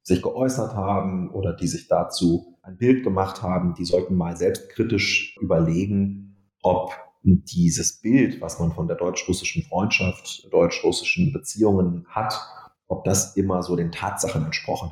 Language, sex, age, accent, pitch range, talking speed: German, male, 30-49, German, 90-110 Hz, 140 wpm